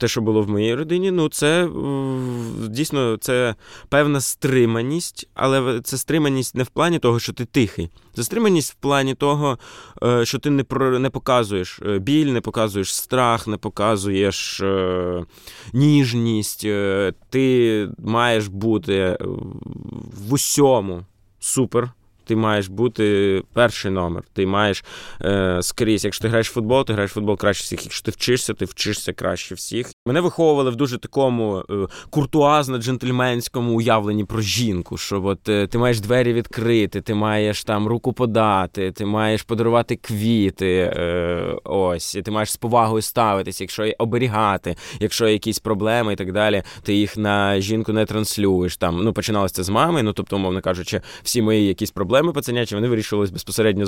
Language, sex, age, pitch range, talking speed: Ukrainian, male, 20-39, 100-125 Hz, 150 wpm